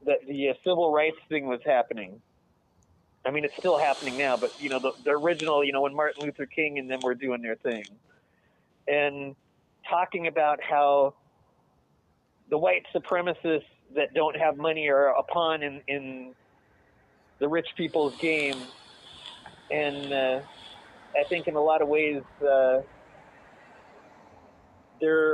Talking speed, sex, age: 145 wpm, male, 30-49